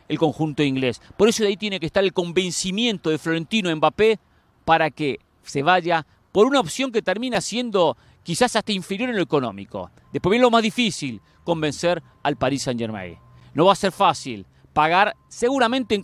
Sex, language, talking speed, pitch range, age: male, English, 180 wpm, 135-210 Hz, 40-59